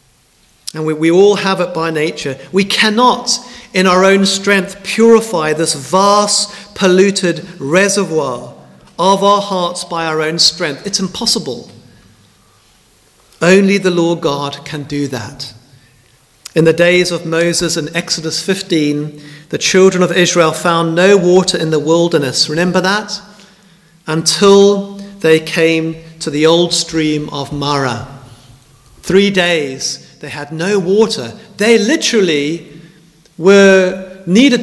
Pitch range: 155-200 Hz